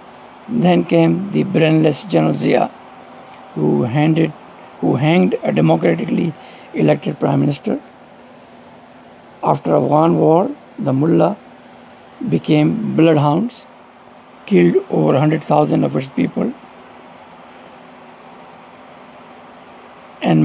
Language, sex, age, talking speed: English, male, 60-79, 80 wpm